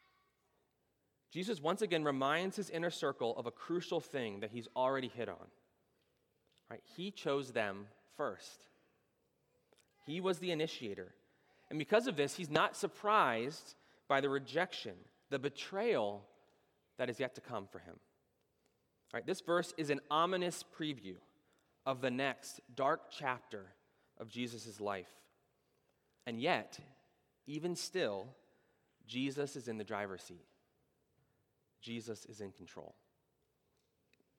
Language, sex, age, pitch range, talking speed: English, male, 30-49, 115-170 Hz, 125 wpm